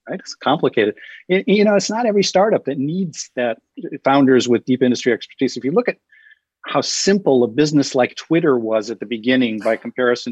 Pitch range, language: 120-145 Hz, English